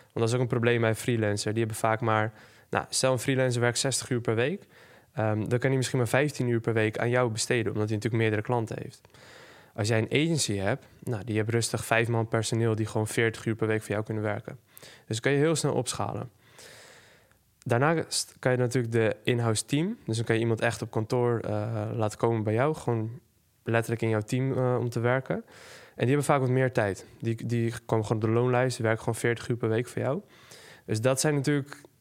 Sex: male